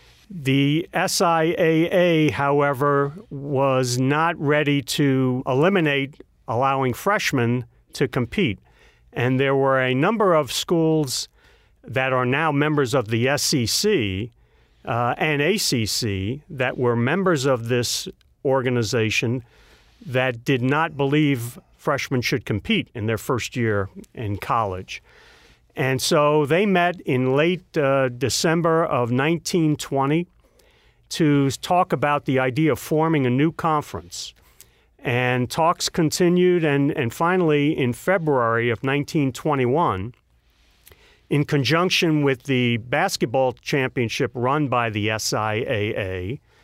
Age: 50-69